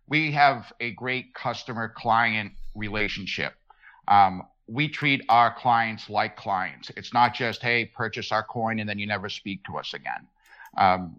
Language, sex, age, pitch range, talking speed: English, male, 50-69, 110-125 Hz, 155 wpm